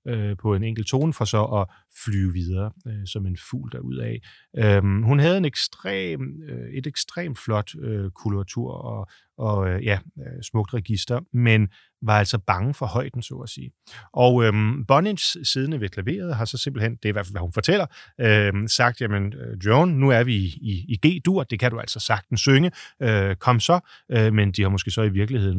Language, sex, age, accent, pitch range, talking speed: Danish, male, 30-49, native, 100-130 Hz, 190 wpm